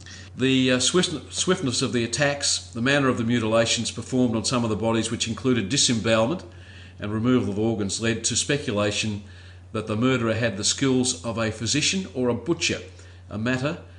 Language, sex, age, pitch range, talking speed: English, male, 50-69, 95-120 Hz, 175 wpm